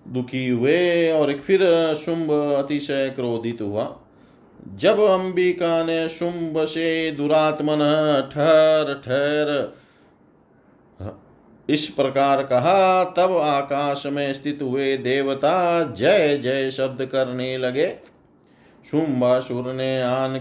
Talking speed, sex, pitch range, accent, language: 95 wpm, male, 125-155 Hz, native, Hindi